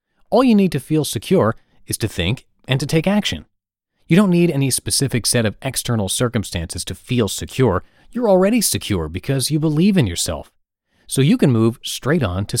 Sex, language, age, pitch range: male, English, 30-49, 100-155 Hz